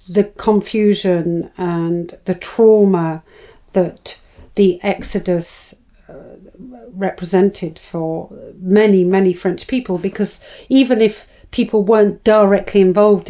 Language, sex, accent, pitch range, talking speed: English, female, British, 180-210 Hz, 100 wpm